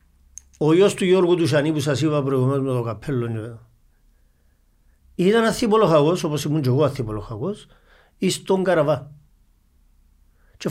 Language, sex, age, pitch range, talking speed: Greek, male, 50-69, 115-180 Hz, 130 wpm